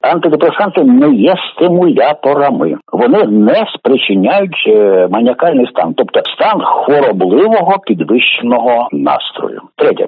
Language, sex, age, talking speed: Ukrainian, male, 60-79, 90 wpm